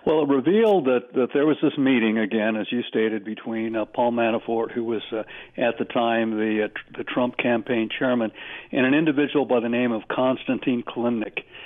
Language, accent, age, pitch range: English, American, 60-79, 120-150 Hz